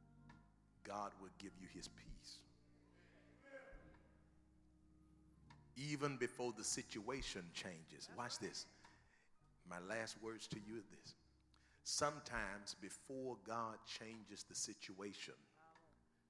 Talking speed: 95 wpm